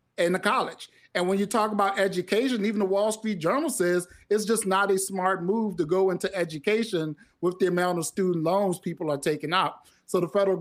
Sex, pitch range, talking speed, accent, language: male, 175-210 Hz, 215 wpm, American, English